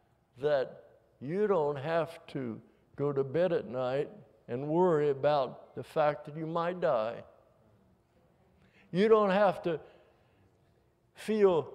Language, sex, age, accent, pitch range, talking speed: English, male, 60-79, American, 145-195 Hz, 125 wpm